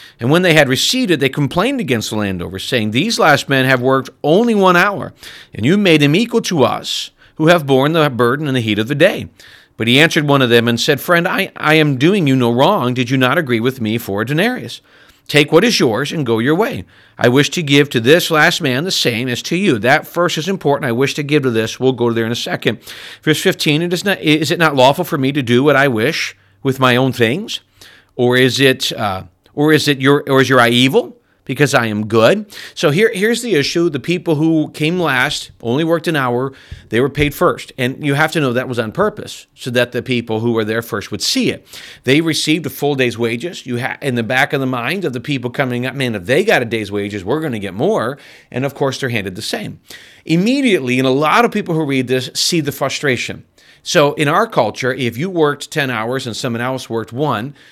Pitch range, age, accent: 120-155 Hz, 40-59, American